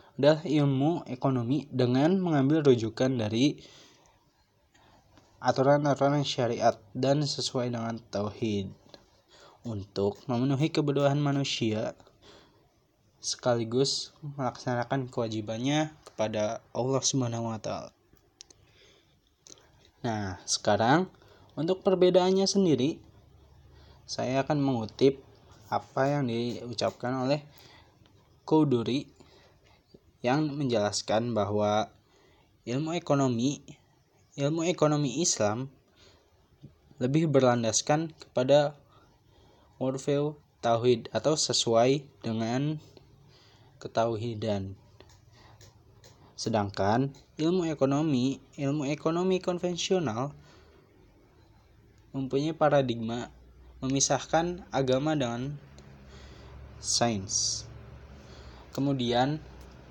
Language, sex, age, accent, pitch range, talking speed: Indonesian, male, 20-39, native, 110-145 Hz, 65 wpm